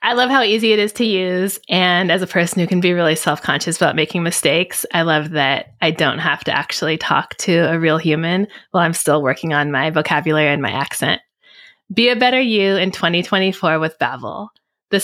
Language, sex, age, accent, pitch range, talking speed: English, female, 20-39, American, 160-215 Hz, 210 wpm